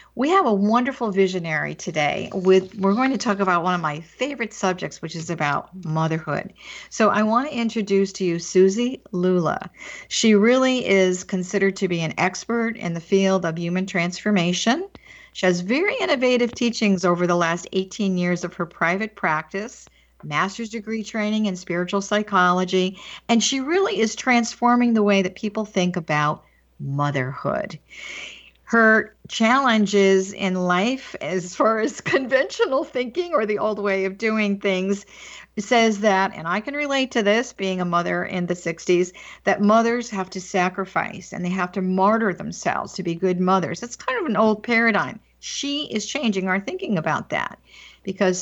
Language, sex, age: English, female, 50-69